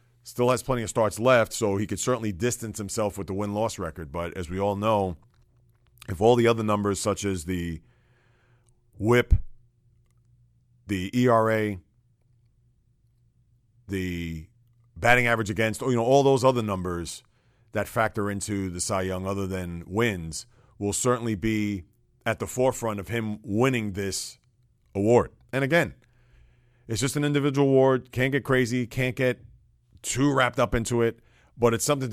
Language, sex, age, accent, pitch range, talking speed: English, male, 40-59, American, 105-125 Hz, 155 wpm